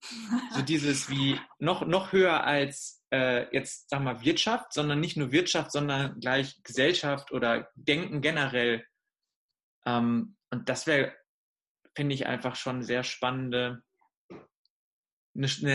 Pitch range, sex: 130-150 Hz, male